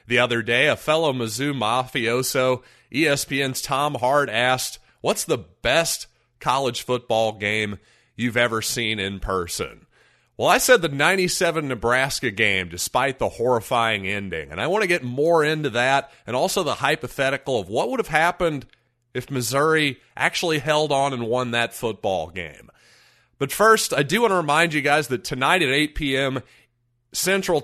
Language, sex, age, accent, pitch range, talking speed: English, male, 30-49, American, 115-150 Hz, 165 wpm